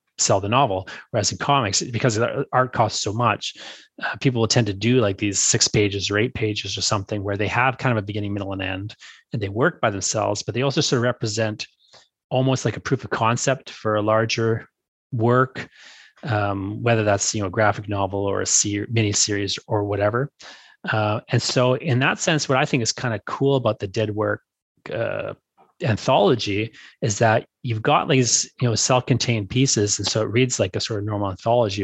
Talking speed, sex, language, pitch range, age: 200 wpm, male, English, 105-130 Hz, 30-49